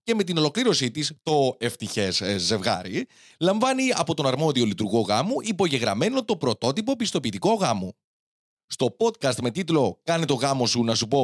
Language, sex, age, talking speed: Greek, male, 30-49, 160 wpm